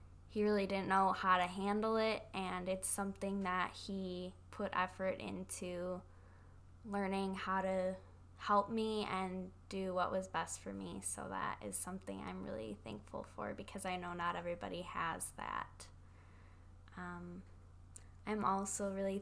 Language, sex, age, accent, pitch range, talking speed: English, female, 10-29, American, 180-205 Hz, 145 wpm